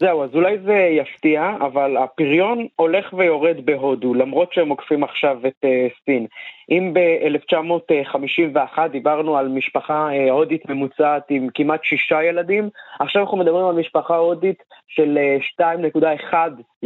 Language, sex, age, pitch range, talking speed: Hebrew, male, 20-39, 140-170 Hz, 125 wpm